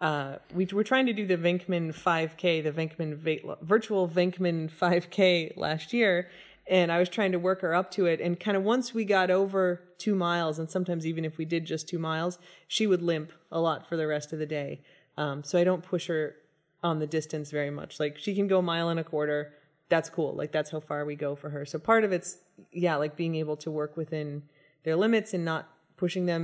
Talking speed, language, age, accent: 230 wpm, English, 30-49, American